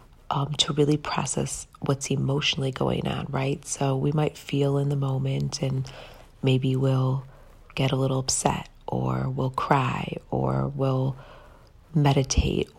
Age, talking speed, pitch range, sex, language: 40-59, 135 wpm, 130-145 Hz, female, English